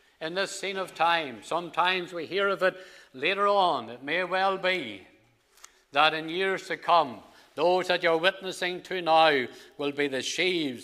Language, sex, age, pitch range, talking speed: English, male, 60-79, 145-195 Hz, 170 wpm